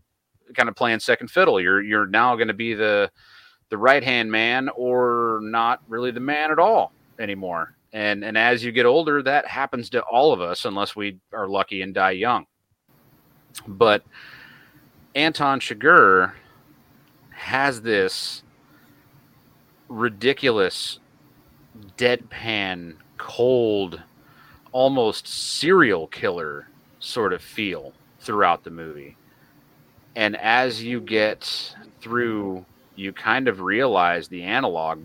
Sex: male